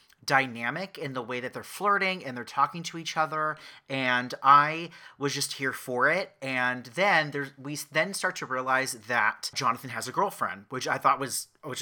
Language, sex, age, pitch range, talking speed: English, male, 30-49, 130-160 Hz, 195 wpm